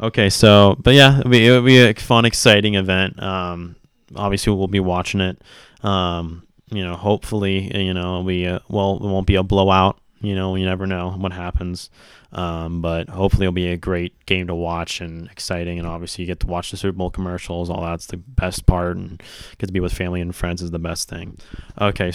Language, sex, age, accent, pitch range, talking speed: English, male, 20-39, American, 90-105 Hz, 215 wpm